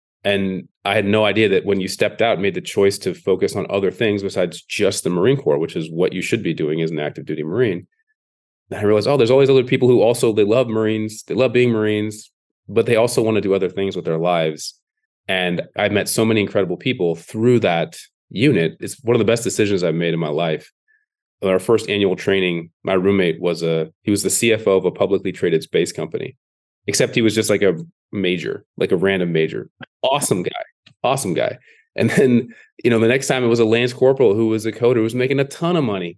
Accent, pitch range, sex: American, 95-130 Hz, male